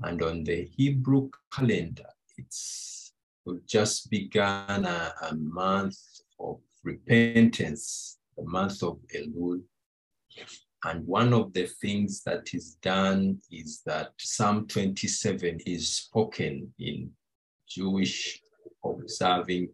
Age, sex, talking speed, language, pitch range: 50-69, male, 105 wpm, English, 80-105 Hz